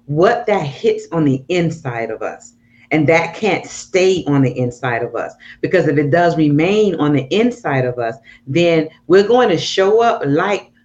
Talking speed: 190 wpm